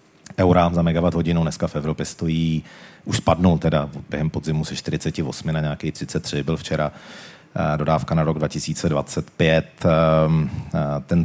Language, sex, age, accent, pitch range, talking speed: Czech, male, 40-59, native, 75-85 Hz, 135 wpm